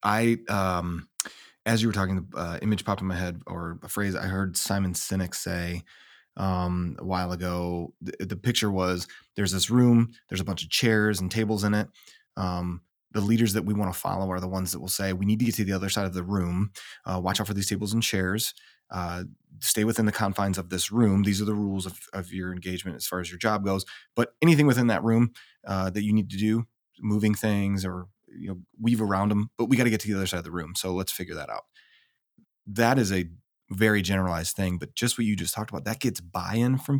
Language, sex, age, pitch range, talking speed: English, male, 20-39, 90-110 Hz, 240 wpm